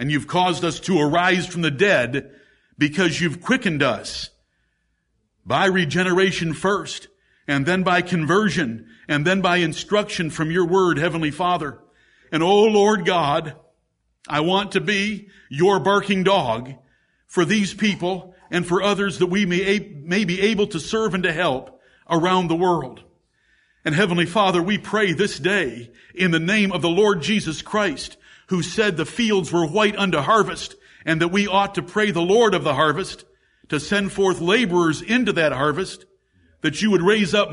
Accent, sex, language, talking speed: American, male, English, 170 wpm